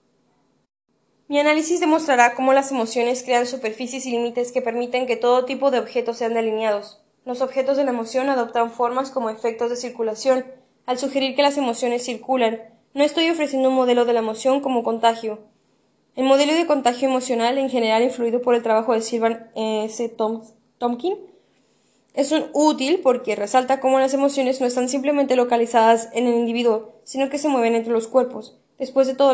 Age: 10-29